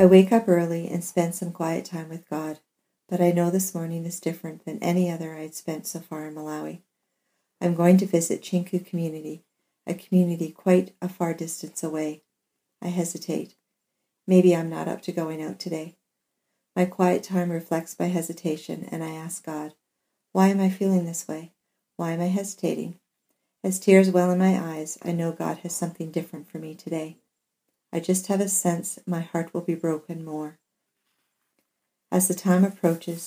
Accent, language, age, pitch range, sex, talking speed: American, English, 50-69, 160-180 Hz, female, 180 wpm